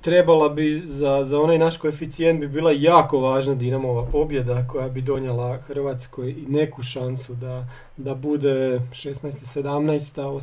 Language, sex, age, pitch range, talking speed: Croatian, male, 40-59, 140-175 Hz, 145 wpm